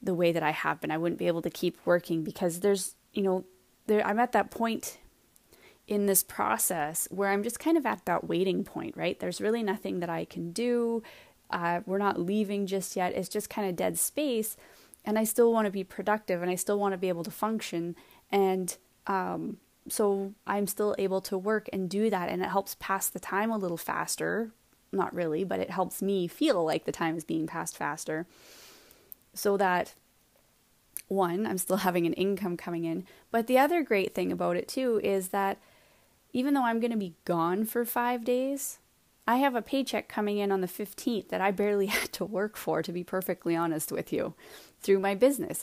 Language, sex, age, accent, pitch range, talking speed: English, female, 20-39, American, 180-220 Hz, 210 wpm